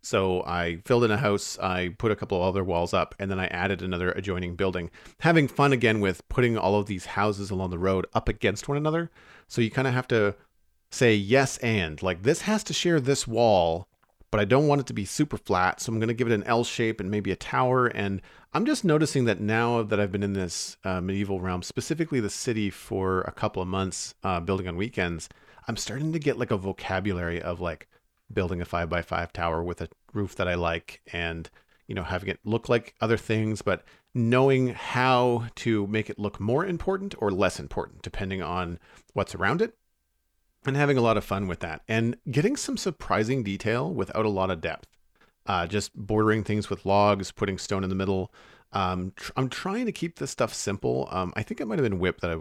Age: 40-59